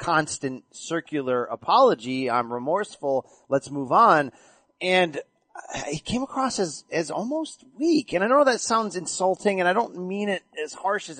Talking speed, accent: 160 wpm, American